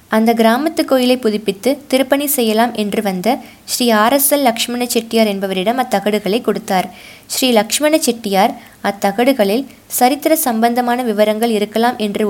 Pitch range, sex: 205-255 Hz, female